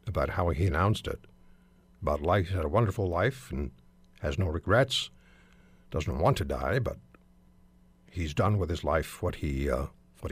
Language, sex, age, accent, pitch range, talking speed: English, male, 60-79, American, 80-120 Hz, 175 wpm